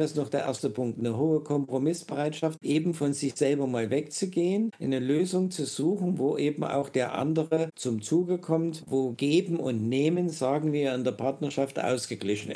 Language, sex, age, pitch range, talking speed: German, male, 50-69, 130-170 Hz, 175 wpm